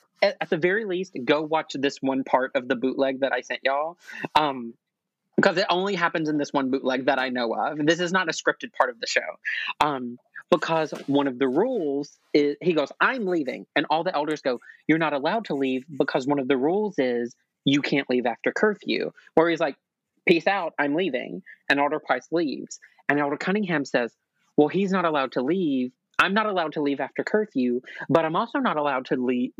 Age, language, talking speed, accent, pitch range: 30-49, English, 215 wpm, American, 140-185 Hz